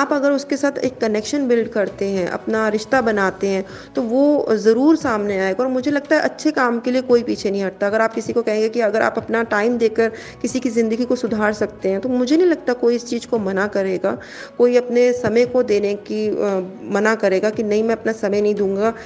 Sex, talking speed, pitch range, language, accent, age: female, 235 wpm, 210-255 Hz, Hindi, native, 30-49